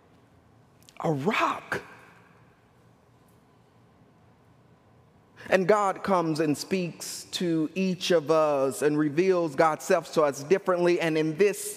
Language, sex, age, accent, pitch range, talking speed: English, male, 30-49, American, 160-225 Hz, 105 wpm